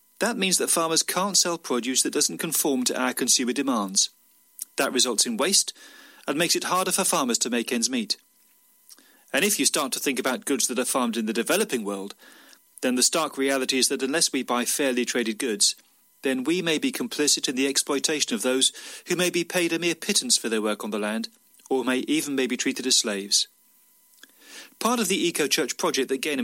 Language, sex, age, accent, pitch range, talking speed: English, male, 40-59, British, 130-205 Hz, 215 wpm